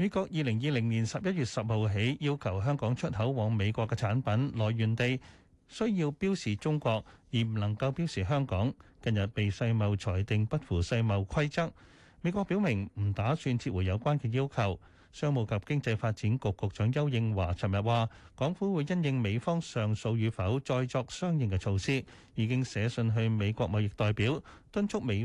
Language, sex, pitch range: Chinese, male, 105-145 Hz